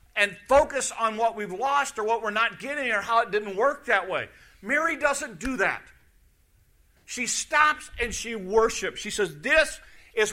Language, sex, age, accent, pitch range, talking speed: English, male, 50-69, American, 140-230 Hz, 180 wpm